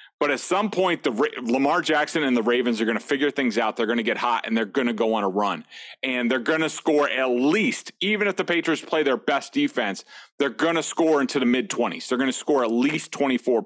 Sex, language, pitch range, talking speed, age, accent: male, English, 120-160 Hz, 255 wpm, 30-49, American